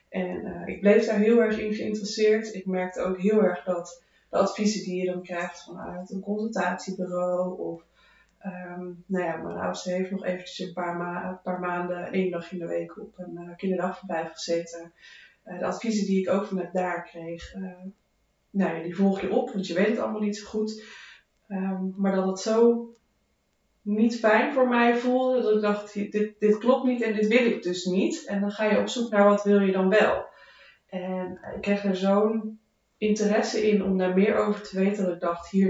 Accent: Dutch